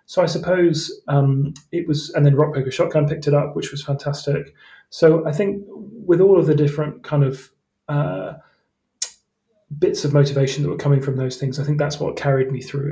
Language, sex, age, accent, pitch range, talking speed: English, male, 30-49, British, 135-150 Hz, 205 wpm